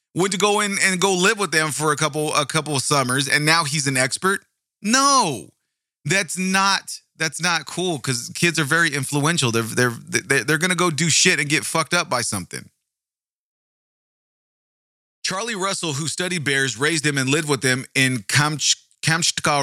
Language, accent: English, American